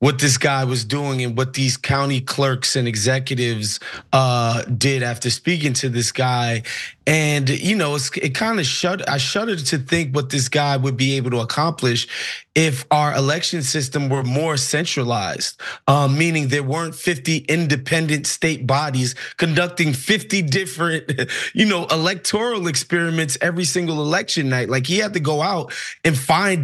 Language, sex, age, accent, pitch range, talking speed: English, male, 30-49, American, 135-170 Hz, 160 wpm